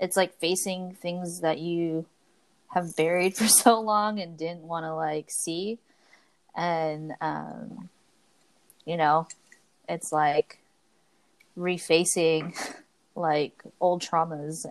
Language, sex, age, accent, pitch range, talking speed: English, female, 20-39, American, 155-185 Hz, 110 wpm